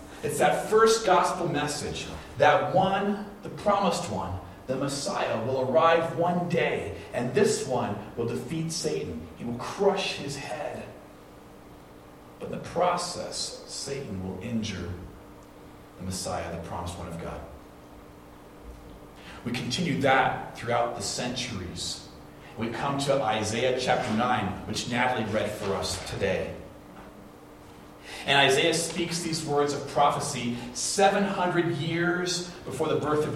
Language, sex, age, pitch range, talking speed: English, male, 40-59, 105-175 Hz, 130 wpm